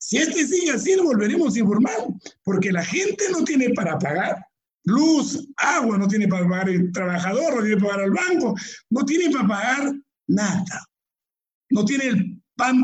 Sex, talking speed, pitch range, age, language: male, 180 wpm, 200-280 Hz, 60-79, Spanish